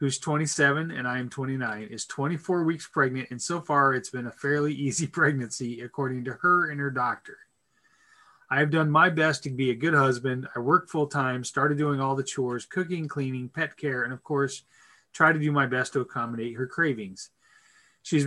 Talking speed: 195 wpm